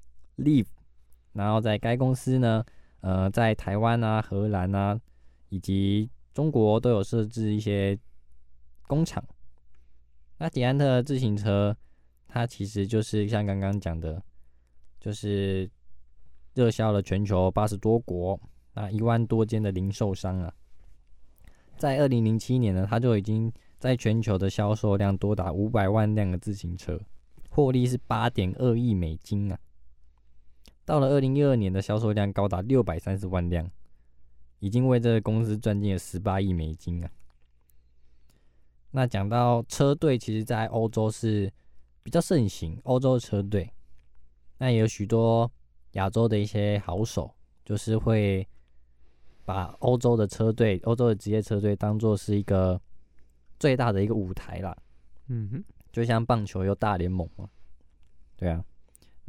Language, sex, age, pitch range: Chinese, male, 20-39, 75-110 Hz